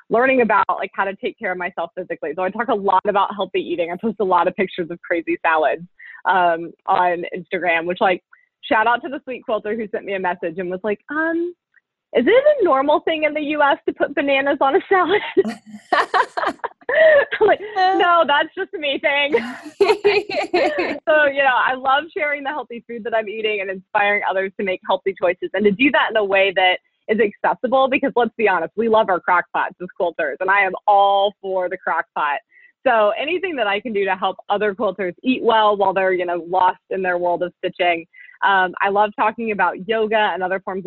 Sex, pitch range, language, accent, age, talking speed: female, 185-265 Hz, English, American, 20-39, 215 wpm